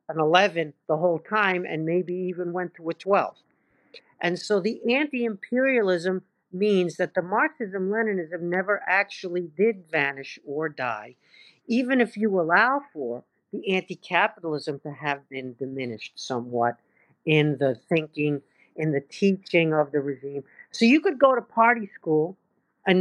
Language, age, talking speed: English, 50-69, 145 wpm